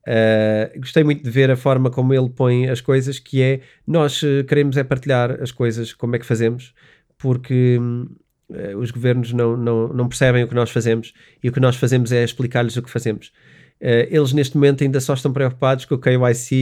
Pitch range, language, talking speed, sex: 110-125 Hz, Portuguese, 190 wpm, male